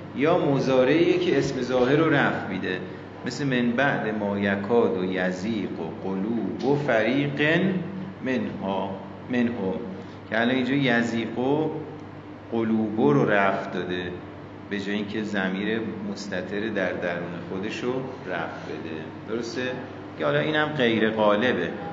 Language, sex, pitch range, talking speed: Persian, male, 100-150 Hz, 130 wpm